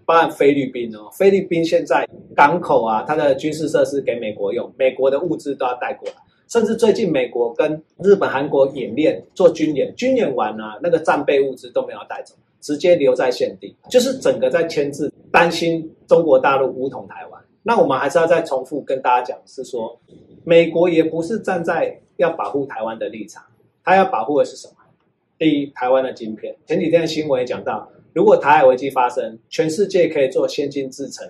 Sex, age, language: male, 30-49, Chinese